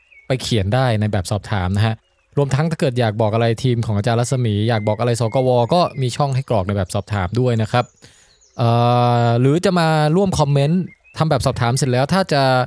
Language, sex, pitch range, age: Thai, male, 115-150 Hz, 20-39